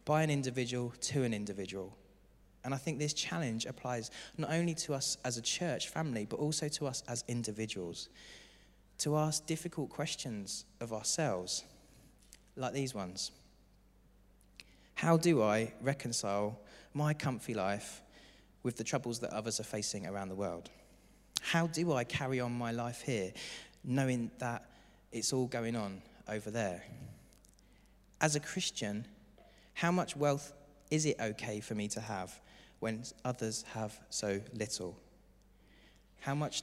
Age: 20-39